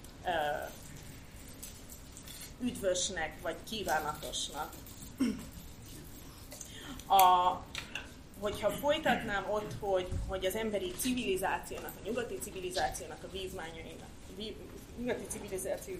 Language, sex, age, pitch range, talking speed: Hungarian, female, 30-49, 185-220 Hz, 75 wpm